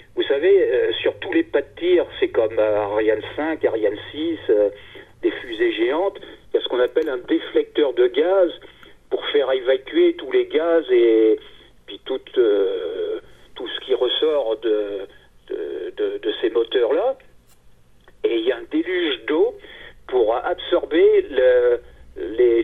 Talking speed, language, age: 150 wpm, French, 50-69